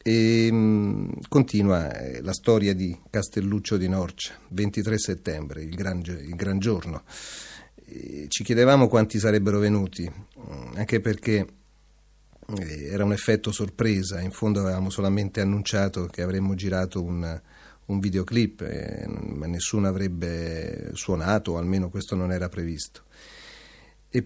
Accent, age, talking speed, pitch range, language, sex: native, 40-59, 115 wpm, 90-105 Hz, Italian, male